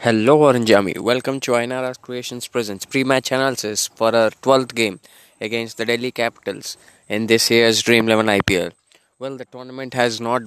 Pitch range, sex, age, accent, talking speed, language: 115-125 Hz, male, 20-39, native, 160 wpm, Telugu